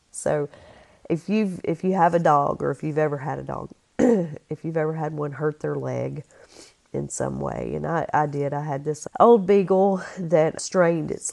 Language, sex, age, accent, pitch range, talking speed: English, female, 40-59, American, 150-185 Hz, 200 wpm